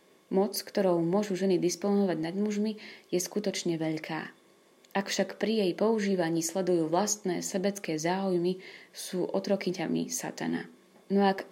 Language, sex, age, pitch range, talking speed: Slovak, female, 30-49, 165-200 Hz, 125 wpm